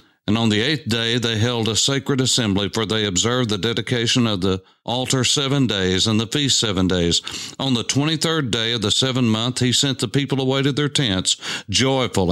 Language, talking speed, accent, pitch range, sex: English, 205 wpm, American, 95-125 Hz, male